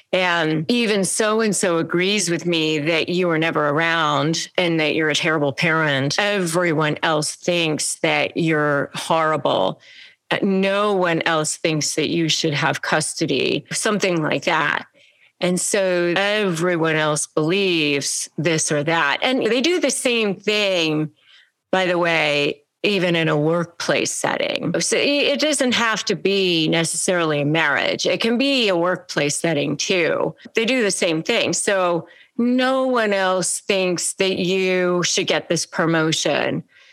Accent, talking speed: American, 145 wpm